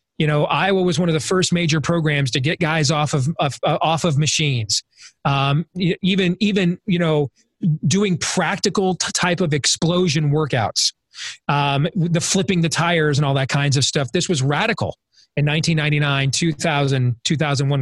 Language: English